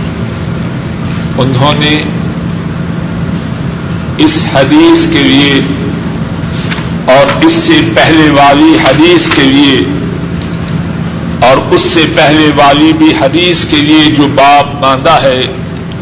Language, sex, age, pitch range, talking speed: Urdu, male, 50-69, 150-175 Hz, 100 wpm